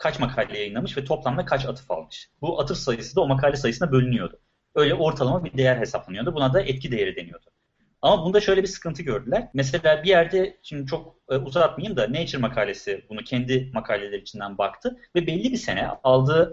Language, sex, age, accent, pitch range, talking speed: Turkish, male, 30-49, native, 125-175 Hz, 190 wpm